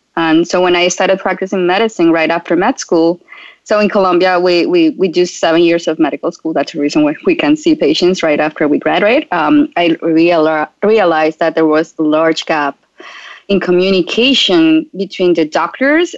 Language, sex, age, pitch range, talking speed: English, female, 20-39, 165-270 Hz, 185 wpm